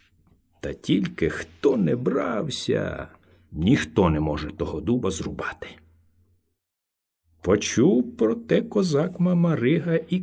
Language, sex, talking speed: Ukrainian, male, 100 wpm